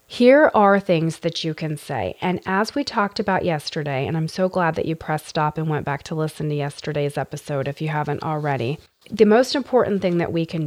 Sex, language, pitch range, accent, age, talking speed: female, English, 155-190 Hz, American, 30-49, 225 wpm